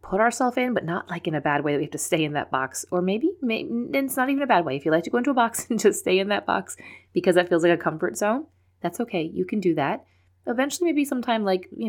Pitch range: 150-190 Hz